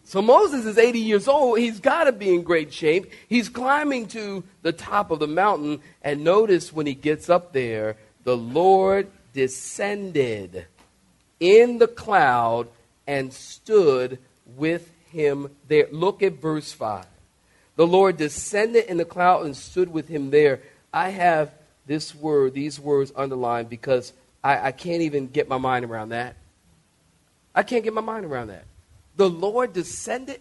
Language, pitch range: English, 130-200 Hz